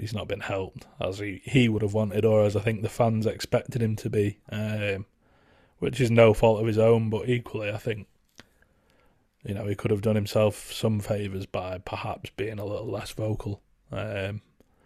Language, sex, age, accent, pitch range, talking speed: English, male, 20-39, British, 105-120 Hz, 200 wpm